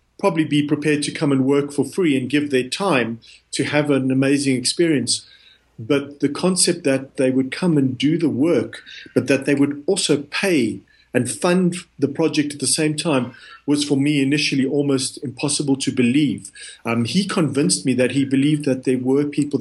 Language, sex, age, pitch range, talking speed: English, male, 50-69, 130-150 Hz, 190 wpm